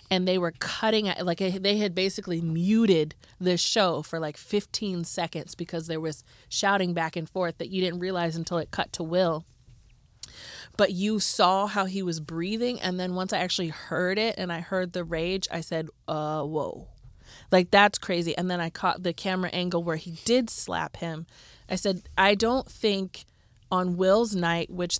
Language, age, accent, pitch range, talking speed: English, 20-39, American, 165-195 Hz, 185 wpm